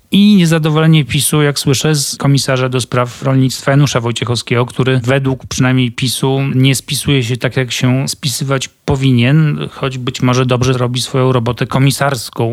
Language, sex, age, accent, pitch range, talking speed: Polish, male, 40-59, native, 125-140 Hz, 155 wpm